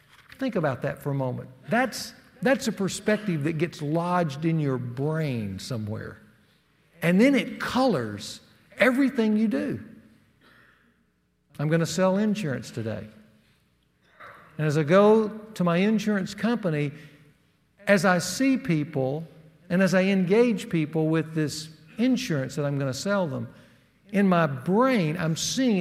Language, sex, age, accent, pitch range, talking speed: English, male, 60-79, American, 150-215 Hz, 140 wpm